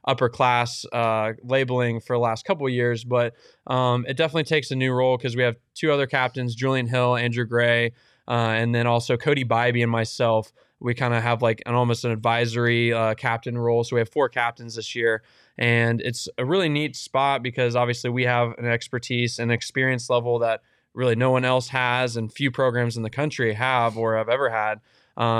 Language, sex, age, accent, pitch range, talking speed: English, male, 20-39, American, 115-135 Hz, 205 wpm